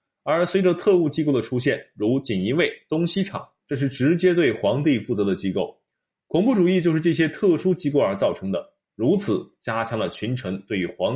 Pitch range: 115-175 Hz